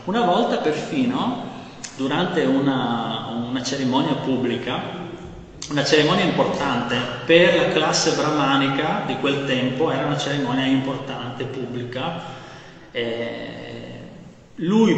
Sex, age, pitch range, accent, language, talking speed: male, 30-49, 125-165 Hz, native, Italian, 100 wpm